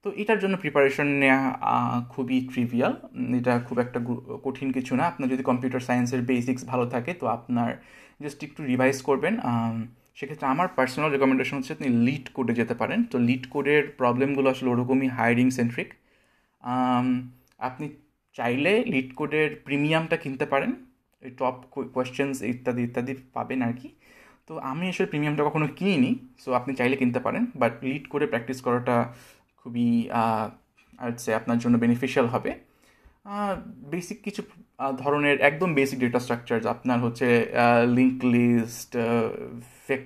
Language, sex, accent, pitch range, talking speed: Bengali, male, native, 120-140 Hz, 140 wpm